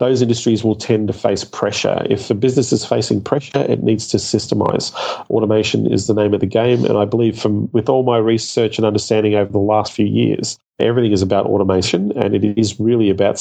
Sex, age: male, 40-59